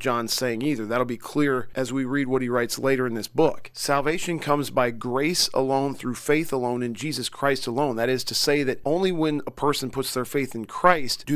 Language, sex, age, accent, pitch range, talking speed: English, male, 40-59, American, 125-150 Hz, 225 wpm